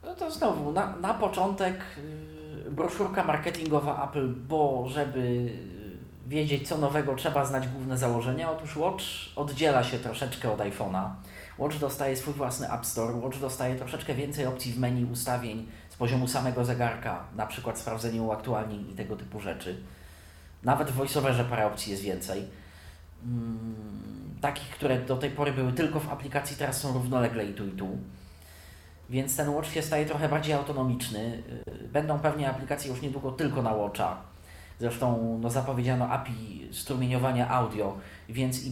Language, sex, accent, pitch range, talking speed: Polish, male, native, 105-145 Hz, 150 wpm